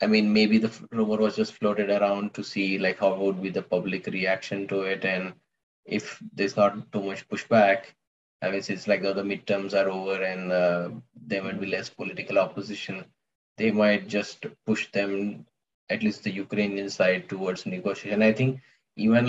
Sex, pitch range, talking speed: male, 100-110 Hz, 185 wpm